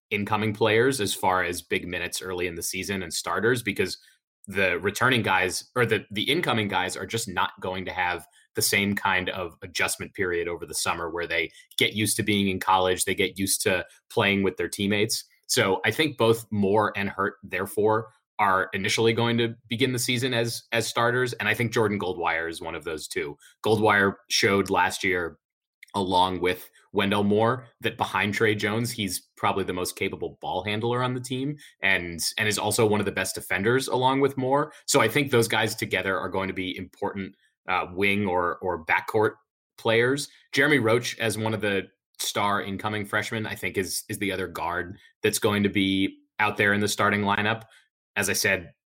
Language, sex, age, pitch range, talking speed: English, male, 30-49, 95-115 Hz, 200 wpm